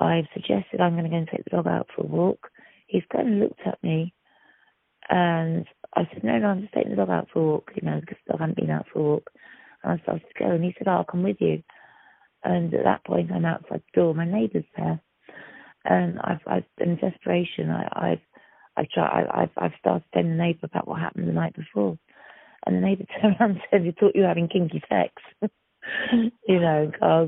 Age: 30-49